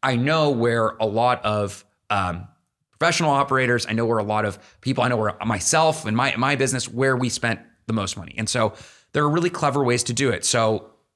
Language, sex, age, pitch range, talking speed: English, male, 30-49, 110-140 Hz, 220 wpm